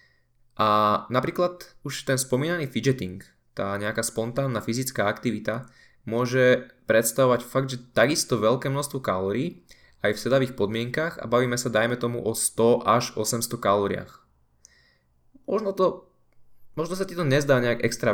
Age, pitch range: 20-39, 110-130 Hz